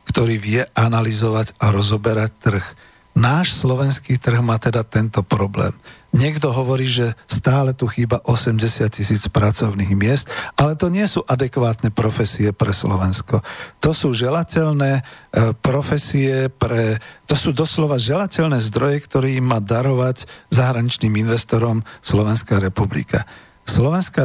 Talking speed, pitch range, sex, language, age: 125 wpm, 110-135 Hz, male, Slovak, 40-59